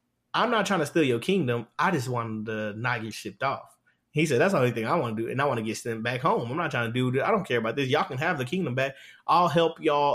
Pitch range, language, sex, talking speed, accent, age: 125-155 Hz, English, male, 315 wpm, American, 20-39